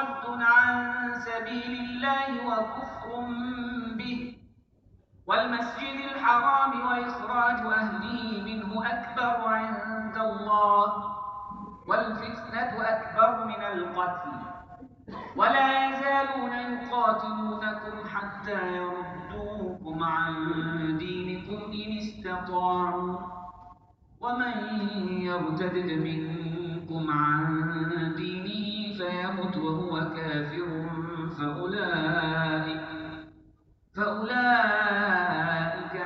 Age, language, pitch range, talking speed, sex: 50-69, English, 165-220 Hz, 60 wpm, male